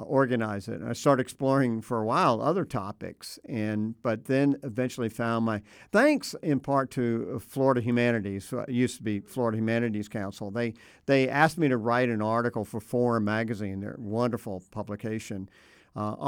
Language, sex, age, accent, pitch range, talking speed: English, male, 50-69, American, 105-125 Hz, 170 wpm